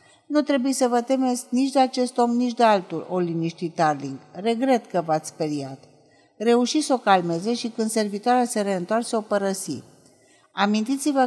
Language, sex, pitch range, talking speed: Romanian, female, 180-245 Hz, 165 wpm